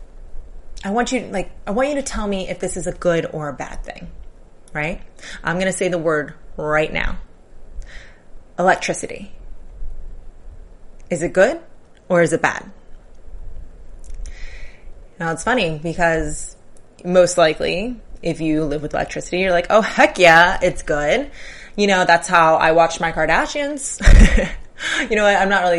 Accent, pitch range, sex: American, 155-195 Hz, female